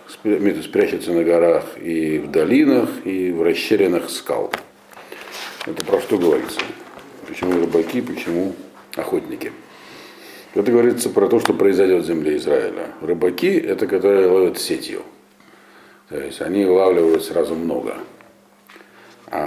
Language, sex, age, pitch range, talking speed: Russian, male, 50-69, 330-420 Hz, 125 wpm